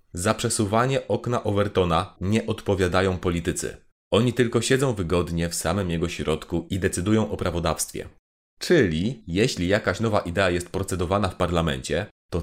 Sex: male